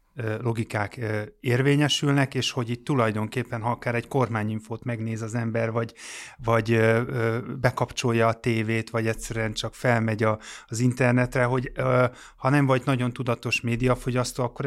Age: 30-49